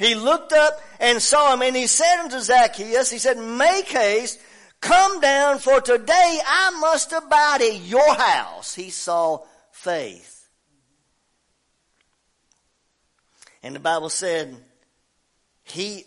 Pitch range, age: 150-245 Hz, 50-69